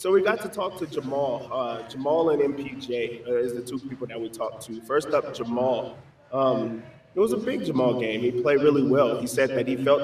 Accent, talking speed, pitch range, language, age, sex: American, 225 wpm, 120-140 Hz, English, 20-39, male